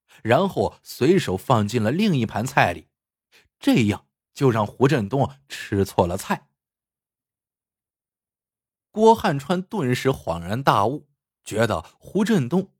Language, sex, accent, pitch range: Chinese, male, native, 100-155 Hz